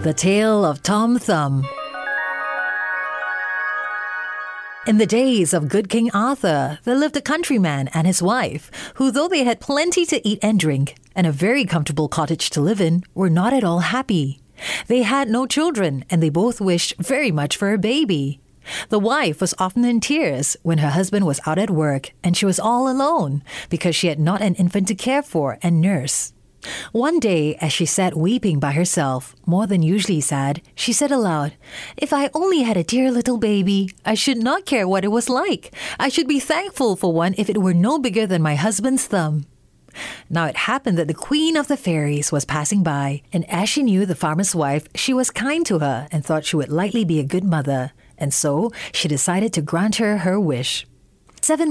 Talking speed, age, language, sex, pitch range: 200 wpm, 30-49, English, female, 160-240 Hz